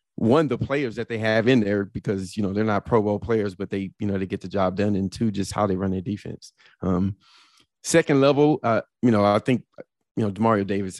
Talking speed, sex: 245 wpm, male